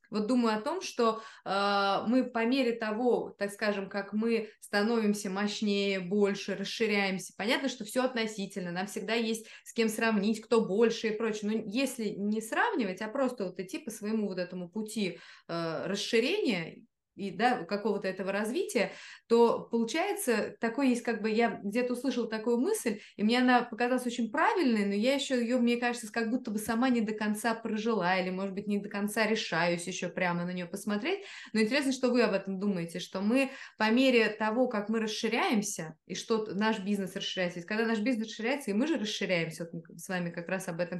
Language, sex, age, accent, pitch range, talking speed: Russian, female, 20-39, native, 200-240 Hz, 190 wpm